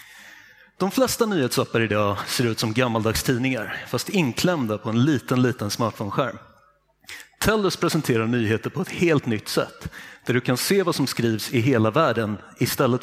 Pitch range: 115-160 Hz